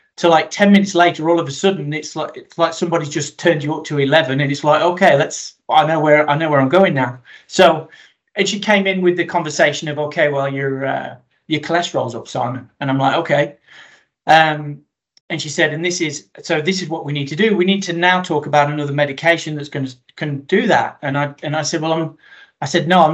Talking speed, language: 245 wpm, English